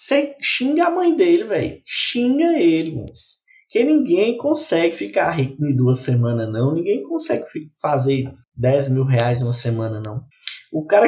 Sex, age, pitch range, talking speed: male, 20-39, 135-205 Hz, 160 wpm